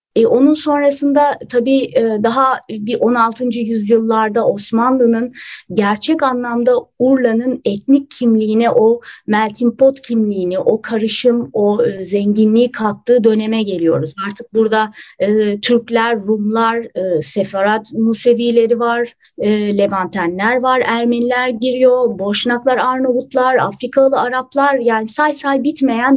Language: Turkish